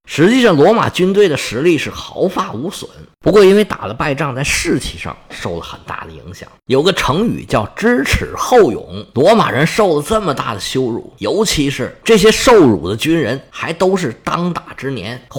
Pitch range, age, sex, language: 120-180 Hz, 50-69, male, Chinese